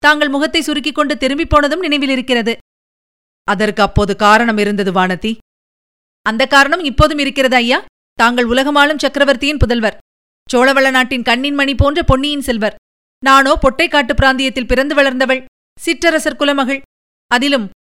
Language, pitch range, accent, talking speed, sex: Tamil, 220-280 Hz, native, 115 wpm, female